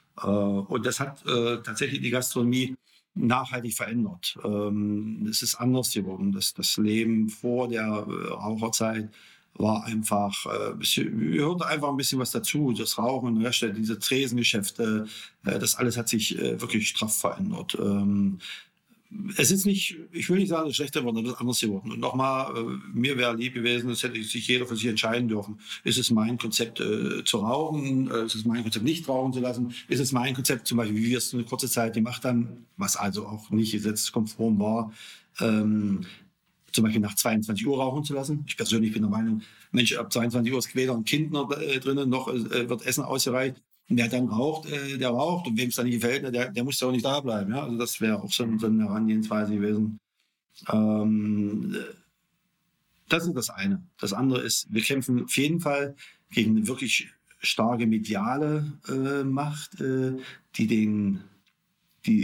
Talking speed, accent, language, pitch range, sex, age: 185 wpm, German, German, 110-140 Hz, male, 50-69